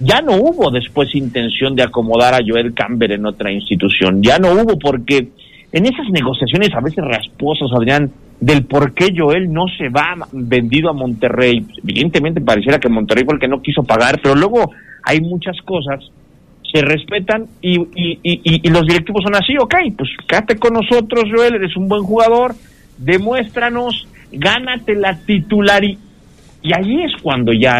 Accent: Mexican